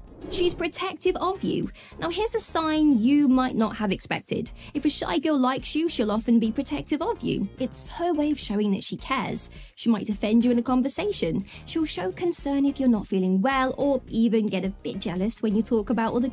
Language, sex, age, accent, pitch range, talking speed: English, female, 20-39, British, 230-305 Hz, 215 wpm